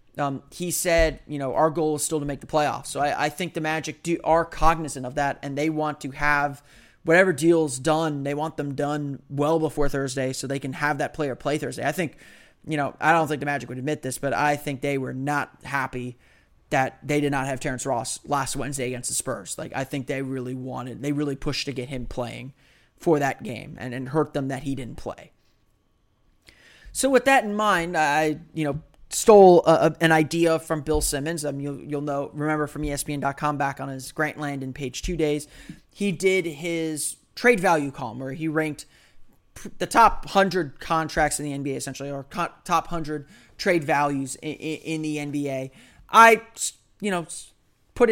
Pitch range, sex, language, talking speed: 140-160 Hz, male, English, 200 wpm